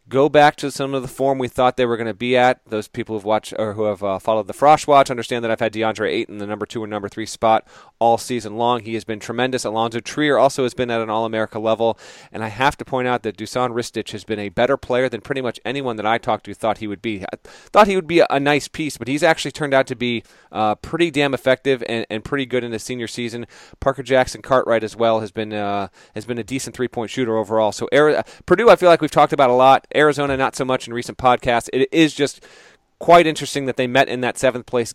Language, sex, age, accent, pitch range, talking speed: English, male, 30-49, American, 110-135 Hz, 265 wpm